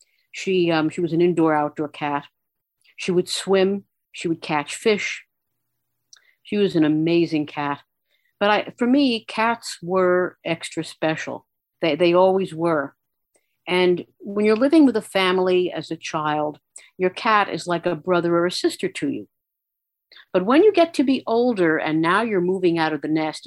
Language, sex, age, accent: English, female, 50-69, American